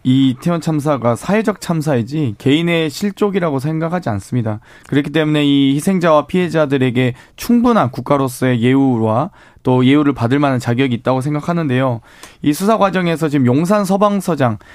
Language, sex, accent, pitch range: Korean, male, native, 135-195 Hz